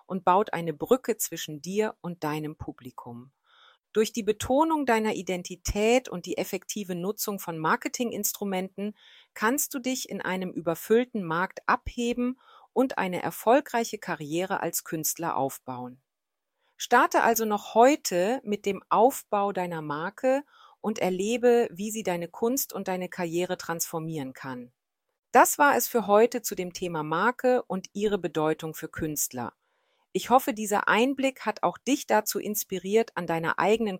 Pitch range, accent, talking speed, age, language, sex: 165-225 Hz, German, 145 wpm, 40-59, German, female